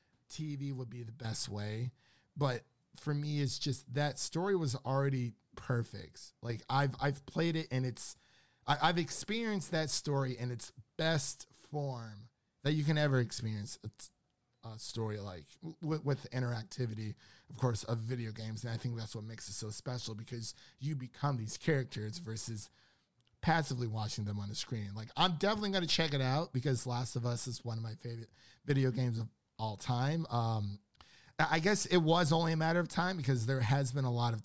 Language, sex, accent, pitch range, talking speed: English, male, American, 115-145 Hz, 185 wpm